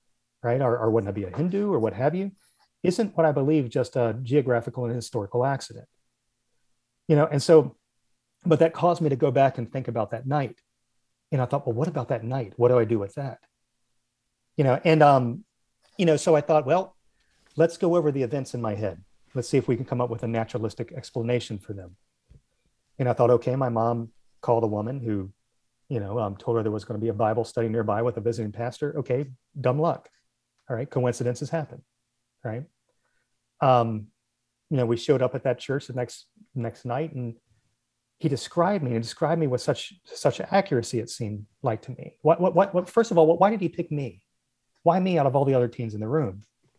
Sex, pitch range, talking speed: male, 120-150 Hz, 220 wpm